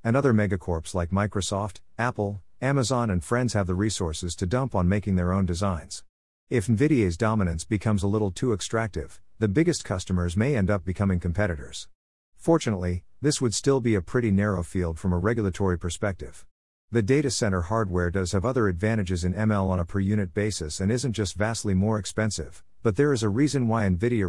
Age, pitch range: 50-69, 90-110 Hz